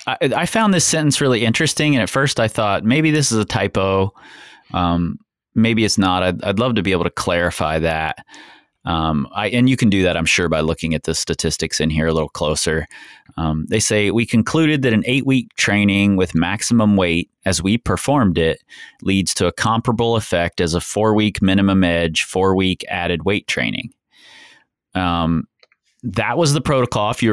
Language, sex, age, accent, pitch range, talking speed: English, male, 30-49, American, 85-115 Hz, 185 wpm